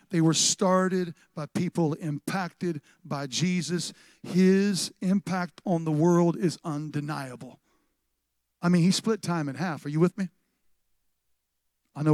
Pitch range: 135-175 Hz